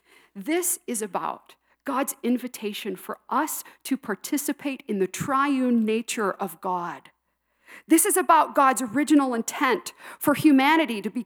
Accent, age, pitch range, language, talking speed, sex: American, 50-69, 215-295 Hz, English, 135 wpm, female